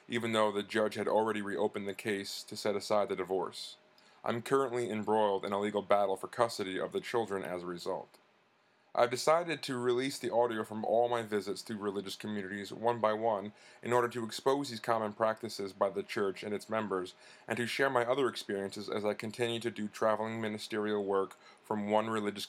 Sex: male